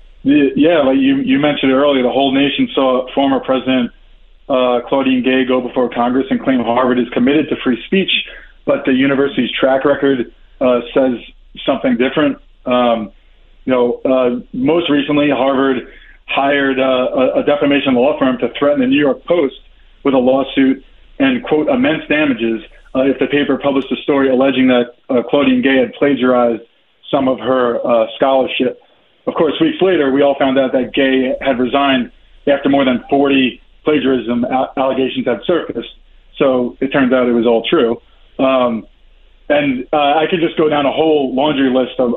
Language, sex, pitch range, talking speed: English, male, 125-140 Hz, 175 wpm